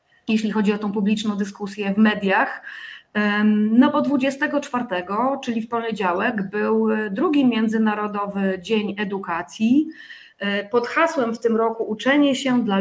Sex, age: female, 30-49